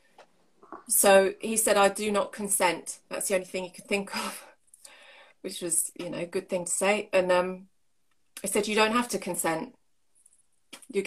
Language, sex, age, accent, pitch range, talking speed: English, female, 30-49, British, 180-210 Hz, 185 wpm